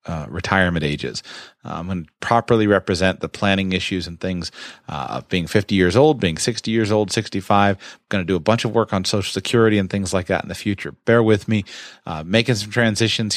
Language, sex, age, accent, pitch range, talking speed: English, male, 30-49, American, 95-130 Hz, 210 wpm